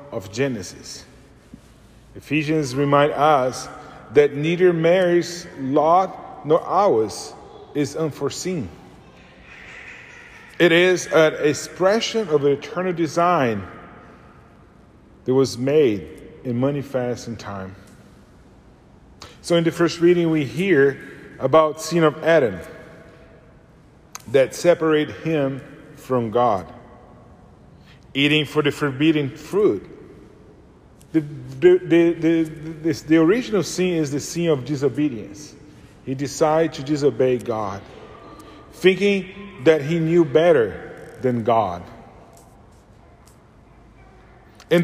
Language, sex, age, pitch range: English, male, 40-59, 130-170 Hz